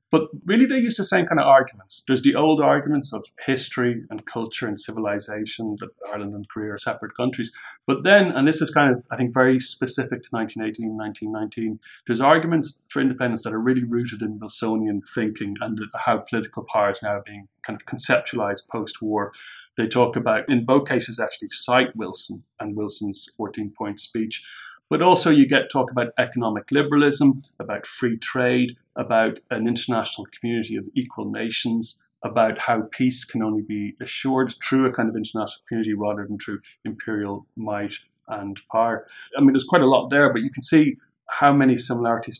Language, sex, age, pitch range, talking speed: English, male, 40-59, 110-130 Hz, 180 wpm